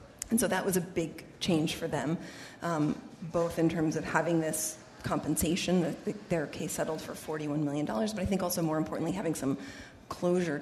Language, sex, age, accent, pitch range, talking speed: English, female, 30-49, American, 155-185 Hz, 180 wpm